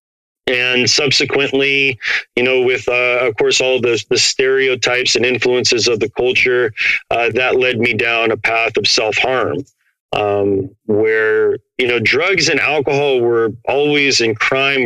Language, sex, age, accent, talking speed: English, male, 40-59, American, 155 wpm